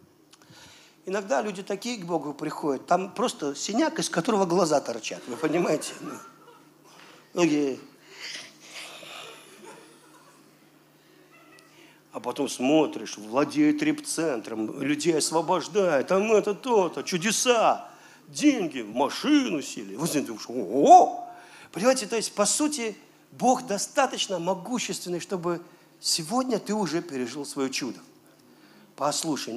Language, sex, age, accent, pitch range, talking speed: Russian, male, 50-69, native, 155-245 Hz, 95 wpm